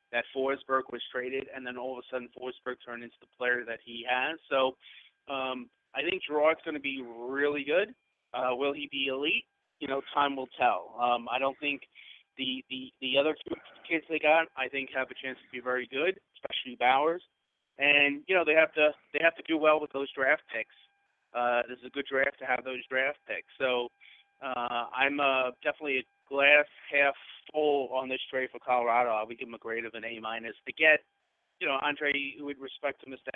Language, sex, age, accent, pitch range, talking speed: English, male, 30-49, American, 125-145 Hz, 215 wpm